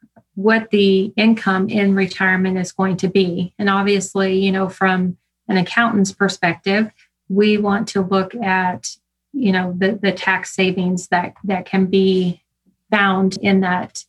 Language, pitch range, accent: English, 185-205 Hz, American